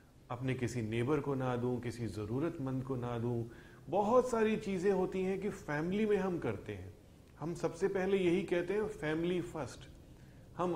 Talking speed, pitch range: 175 wpm, 110-165 Hz